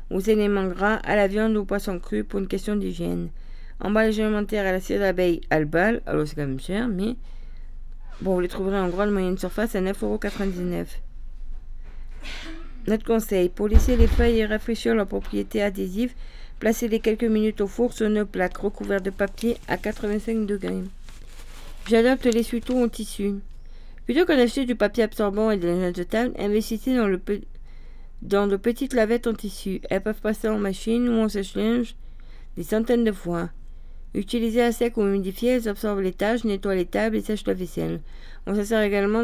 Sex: female